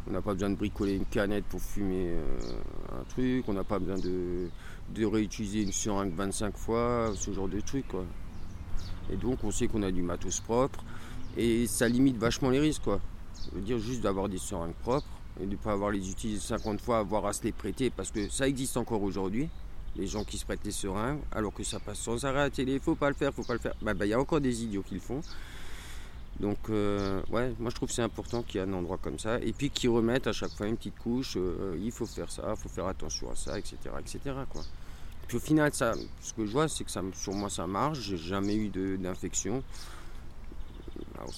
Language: French